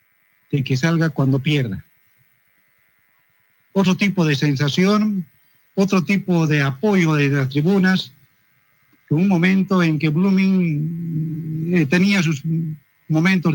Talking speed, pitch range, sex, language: 110 wpm, 125-180 Hz, male, Spanish